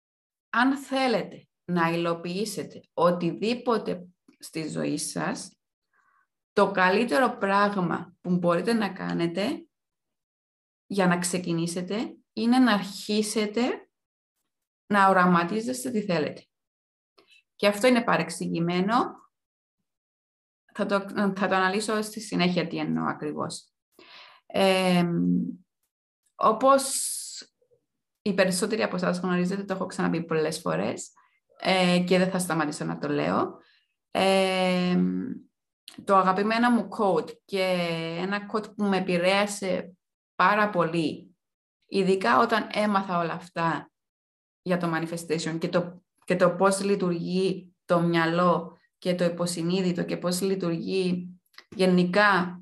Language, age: Greek, 20-39